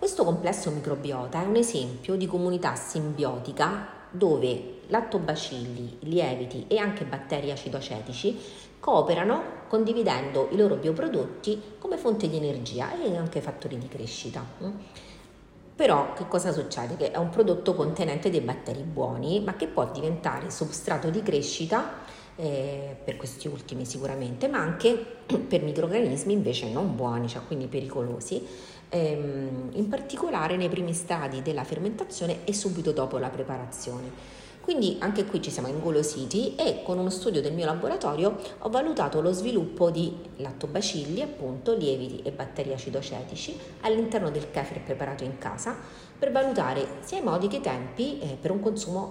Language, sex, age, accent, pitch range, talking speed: Italian, female, 40-59, native, 135-195 Hz, 140 wpm